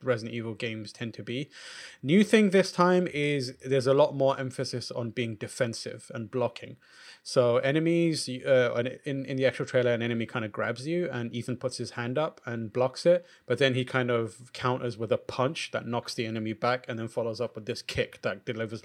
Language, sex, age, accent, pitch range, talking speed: English, male, 30-49, British, 115-135 Hz, 215 wpm